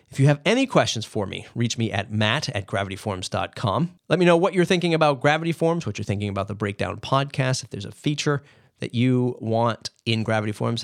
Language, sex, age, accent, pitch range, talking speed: English, male, 30-49, American, 110-150 Hz, 215 wpm